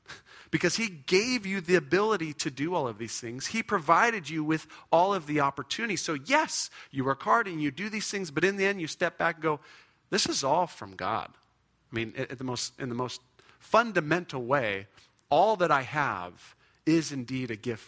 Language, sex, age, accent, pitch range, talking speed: English, male, 40-59, American, 135-200 Hz, 210 wpm